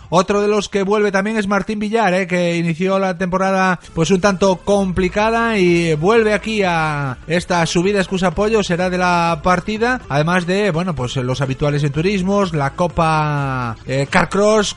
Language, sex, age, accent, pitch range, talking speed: Spanish, male, 30-49, Spanish, 165-200 Hz, 170 wpm